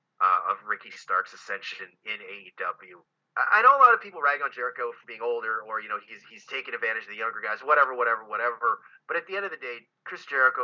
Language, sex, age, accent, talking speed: English, male, 30-49, American, 235 wpm